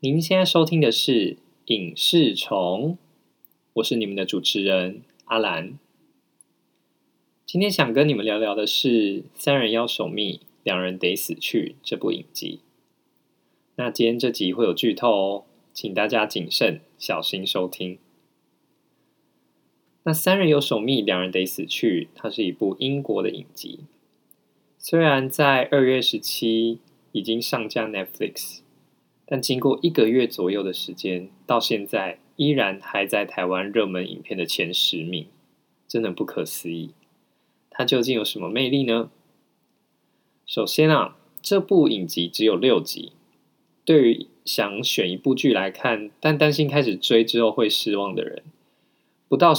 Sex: male